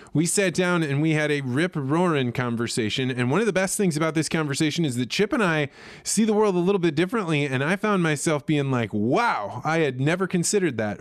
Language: English